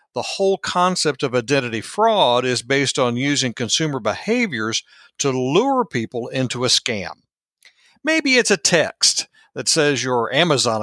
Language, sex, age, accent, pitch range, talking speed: English, male, 60-79, American, 125-185 Hz, 145 wpm